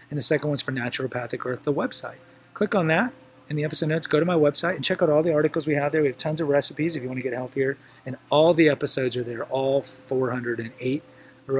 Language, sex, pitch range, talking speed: English, male, 130-150 Hz, 250 wpm